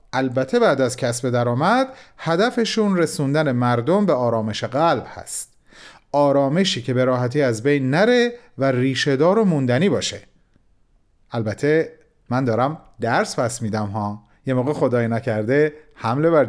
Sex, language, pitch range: male, Persian, 125-205 Hz